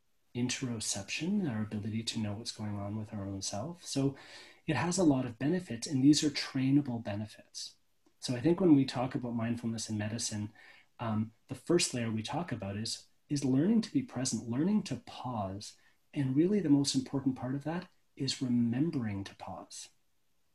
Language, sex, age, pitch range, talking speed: English, male, 30-49, 115-145 Hz, 180 wpm